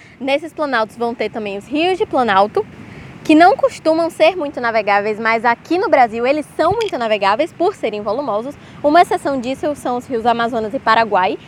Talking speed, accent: 185 wpm, Brazilian